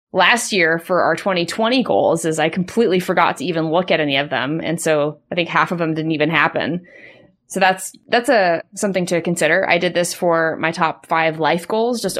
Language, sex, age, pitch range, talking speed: English, female, 20-39, 170-215 Hz, 215 wpm